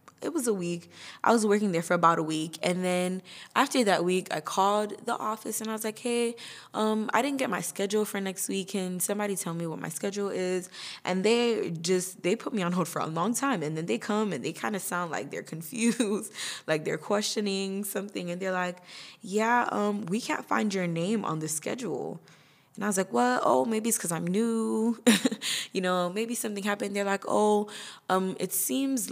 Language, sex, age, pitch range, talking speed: English, female, 10-29, 170-215 Hz, 220 wpm